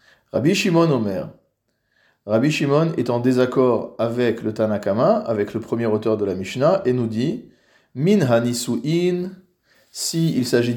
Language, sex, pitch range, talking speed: French, male, 115-155 Hz, 145 wpm